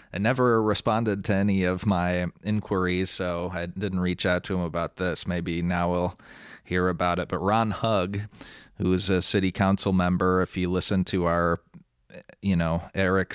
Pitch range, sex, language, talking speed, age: 90-100 Hz, male, English, 180 wpm, 30-49